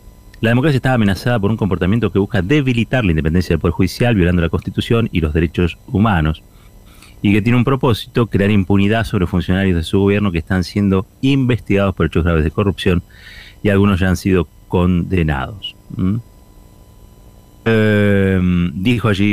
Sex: male